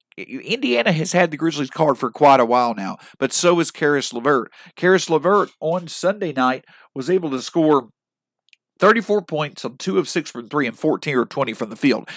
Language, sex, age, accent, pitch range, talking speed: English, male, 50-69, American, 130-185 Hz, 195 wpm